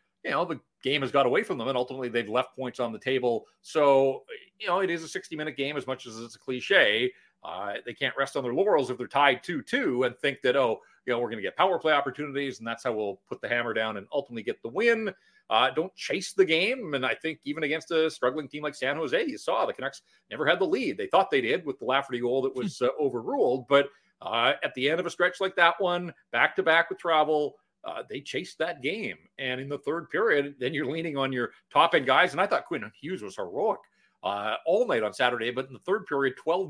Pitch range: 130-160 Hz